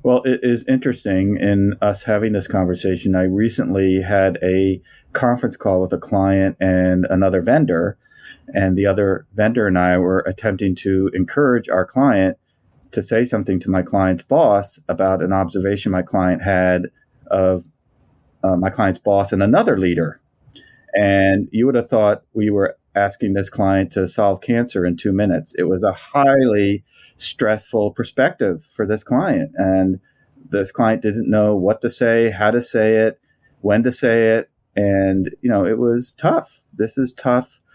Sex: male